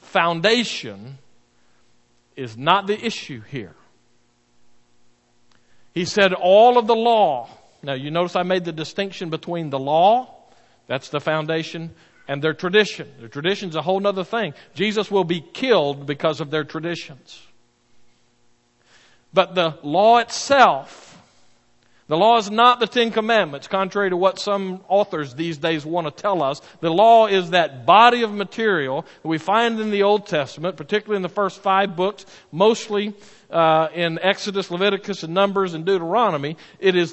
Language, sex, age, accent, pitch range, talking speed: English, male, 50-69, American, 155-210 Hz, 155 wpm